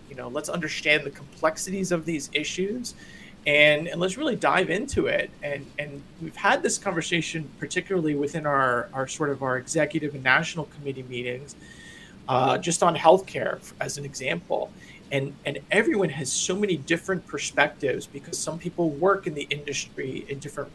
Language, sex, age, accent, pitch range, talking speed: English, male, 40-59, American, 140-175 Hz, 170 wpm